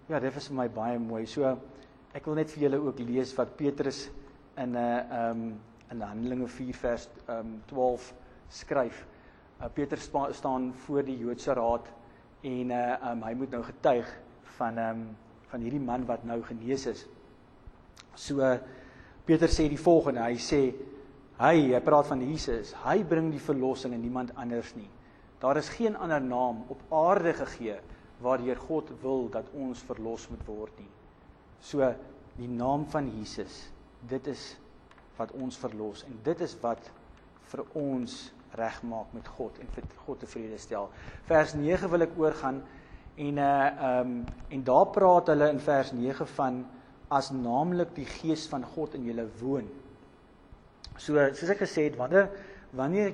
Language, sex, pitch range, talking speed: English, male, 120-145 Hz, 160 wpm